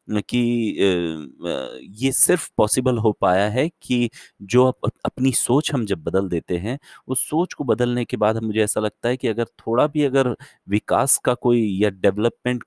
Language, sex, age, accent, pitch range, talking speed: Hindi, male, 30-49, native, 95-130 Hz, 170 wpm